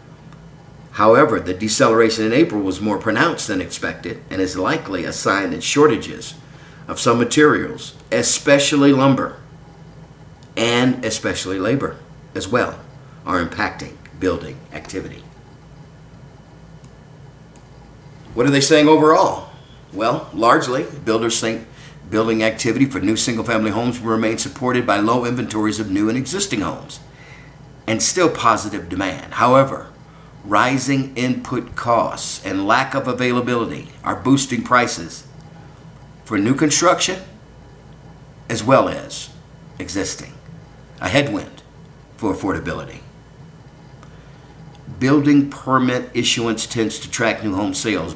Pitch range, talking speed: 115-150 Hz, 115 wpm